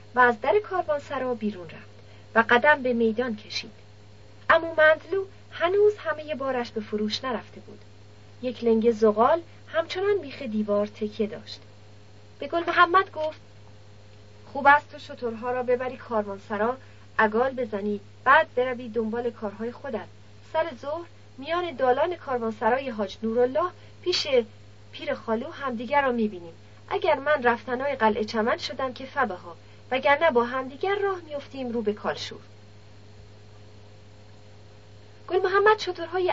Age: 40-59